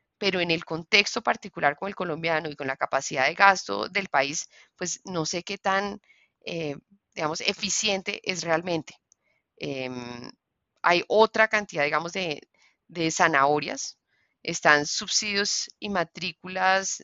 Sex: female